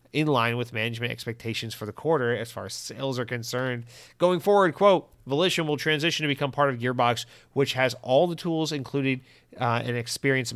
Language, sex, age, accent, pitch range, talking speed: English, male, 30-49, American, 120-140 Hz, 195 wpm